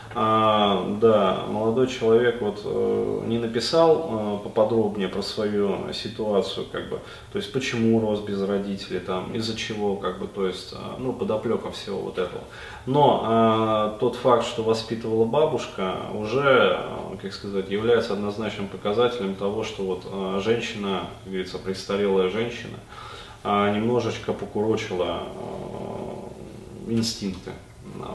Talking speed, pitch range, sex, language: 125 wpm, 100-120 Hz, male, Russian